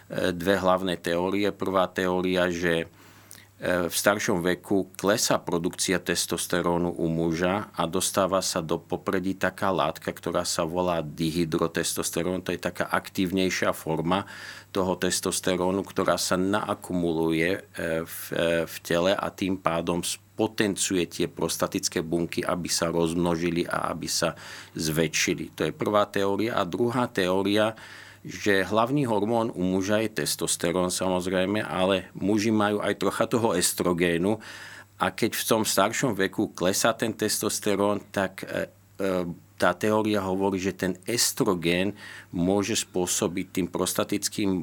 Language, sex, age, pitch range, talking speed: Slovak, male, 40-59, 85-100 Hz, 125 wpm